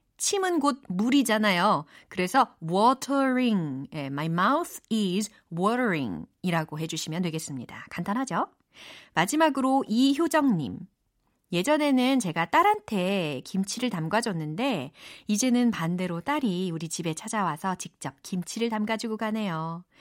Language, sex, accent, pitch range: Korean, female, native, 170-250 Hz